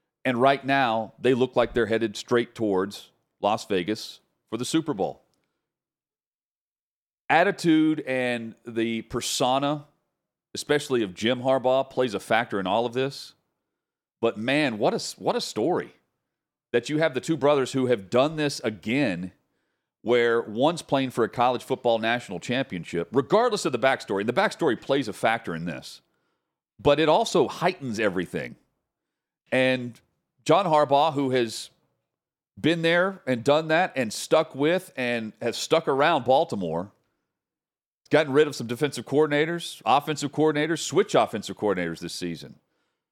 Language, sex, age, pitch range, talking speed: English, male, 40-59, 115-145 Hz, 145 wpm